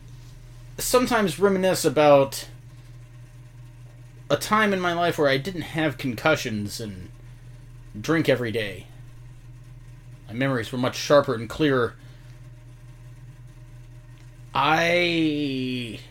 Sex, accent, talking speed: male, American, 95 wpm